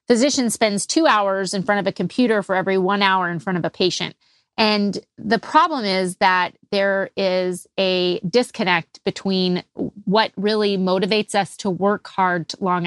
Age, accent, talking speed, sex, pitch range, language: 30-49, American, 170 wpm, female, 185-215 Hz, English